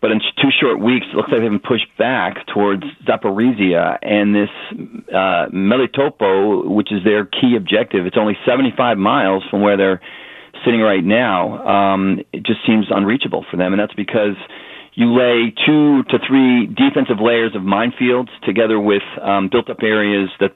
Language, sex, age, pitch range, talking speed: English, male, 40-59, 100-115 Hz, 170 wpm